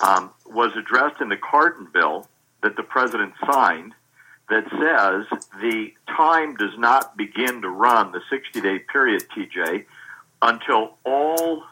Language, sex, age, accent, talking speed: English, male, 50-69, American, 135 wpm